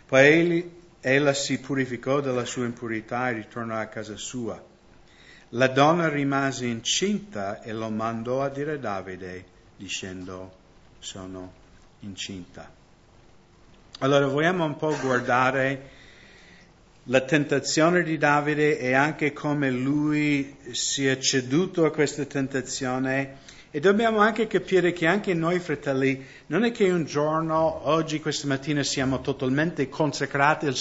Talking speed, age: 125 wpm, 50-69